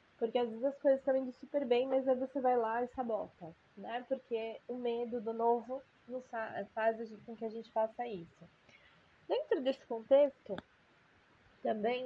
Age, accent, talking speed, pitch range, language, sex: 20-39, Brazilian, 170 wpm, 210-250 Hz, Portuguese, female